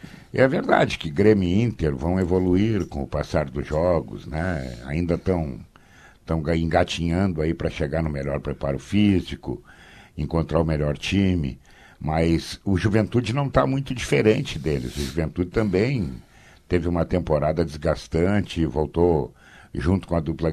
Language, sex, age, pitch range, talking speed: Portuguese, male, 60-79, 75-105 Hz, 140 wpm